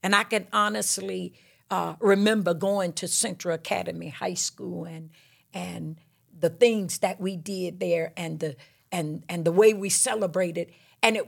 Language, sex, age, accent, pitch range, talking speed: English, female, 50-69, American, 175-245 Hz, 160 wpm